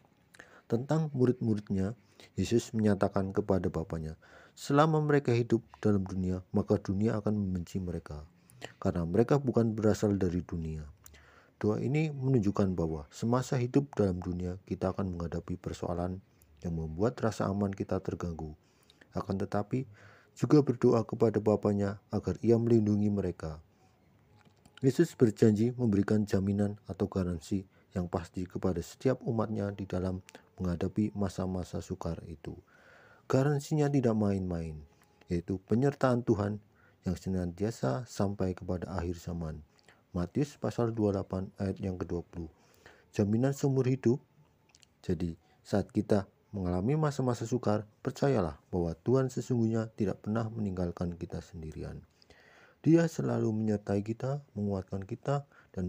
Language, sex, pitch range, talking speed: English, male, 90-115 Hz, 120 wpm